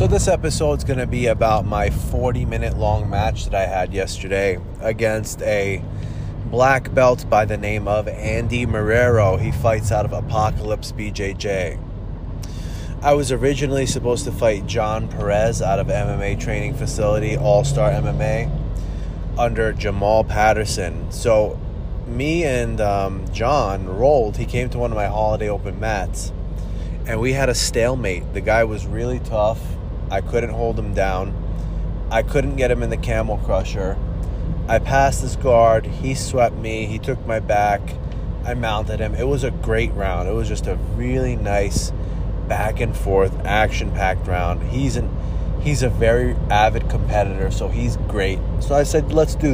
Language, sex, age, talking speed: English, male, 20-39, 160 wpm